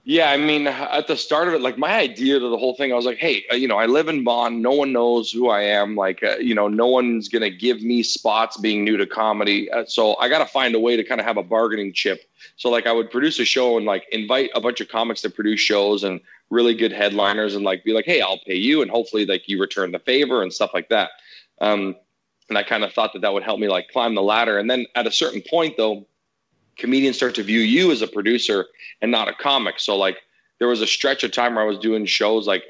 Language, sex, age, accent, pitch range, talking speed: English, male, 30-49, American, 105-125 Hz, 275 wpm